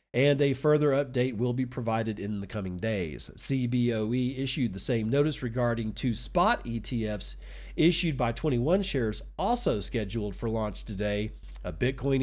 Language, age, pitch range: English, 40-59, 110-135 Hz